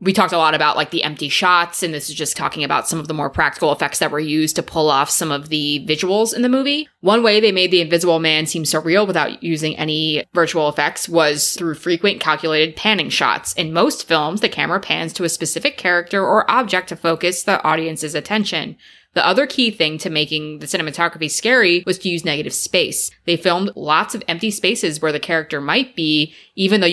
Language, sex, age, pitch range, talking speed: English, female, 20-39, 155-190 Hz, 220 wpm